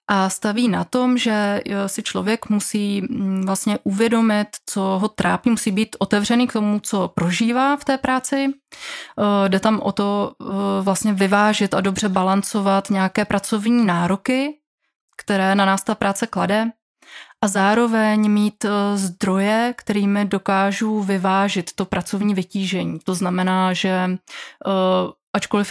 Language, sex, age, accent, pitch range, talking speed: Czech, female, 30-49, native, 190-215 Hz, 130 wpm